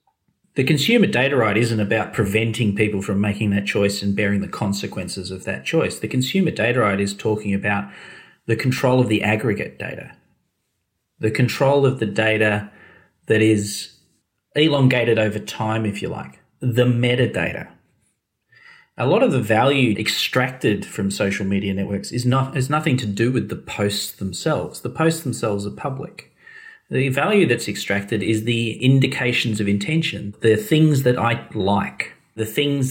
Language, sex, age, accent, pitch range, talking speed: English, male, 30-49, Australian, 100-125 Hz, 160 wpm